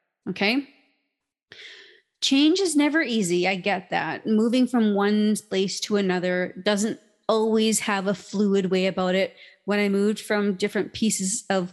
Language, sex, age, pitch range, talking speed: English, female, 30-49, 185-220 Hz, 150 wpm